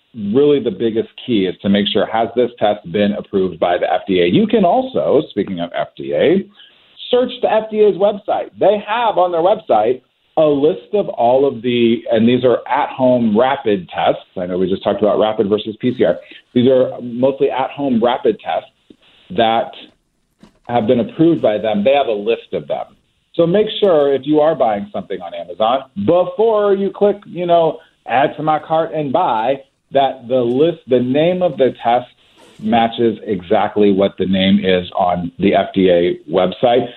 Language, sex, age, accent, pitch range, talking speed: English, male, 40-59, American, 115-180 Hz, 180 wpm